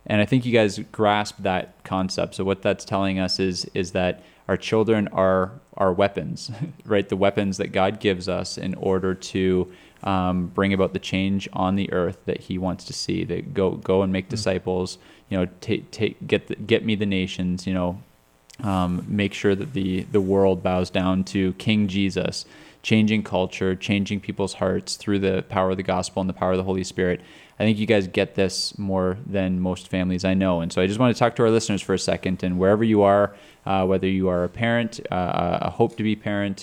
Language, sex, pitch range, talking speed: English, male, 90-105 Hz, 220 wpm